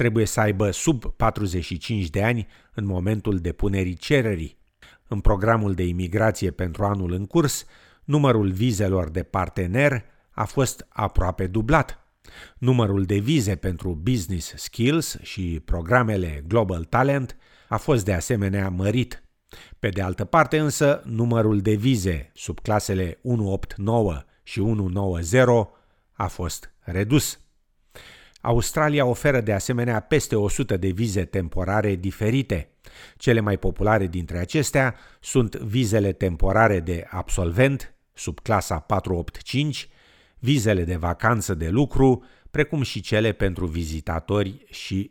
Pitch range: 95-120 Hz